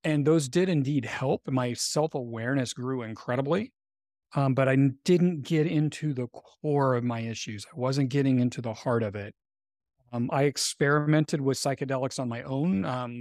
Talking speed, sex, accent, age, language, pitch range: 170 wpm, male, American, 40-59, English, 120-140 Hz